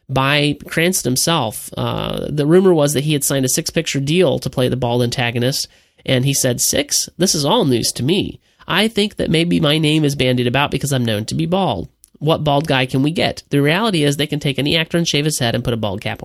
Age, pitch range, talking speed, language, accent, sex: 30-49, 125-165 Hz, 250 wpm, English, American, male